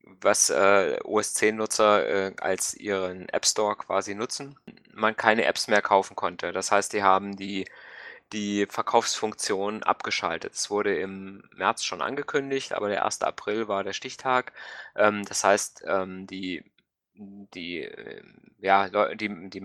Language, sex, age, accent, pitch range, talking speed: German, male, 20-39, German, 95-110 Hz, 135 wpm